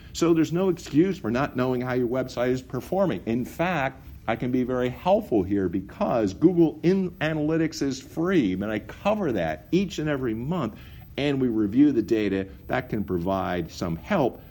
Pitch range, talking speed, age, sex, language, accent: 95-150 Hz, 180 wpm, 50-69, male, English, American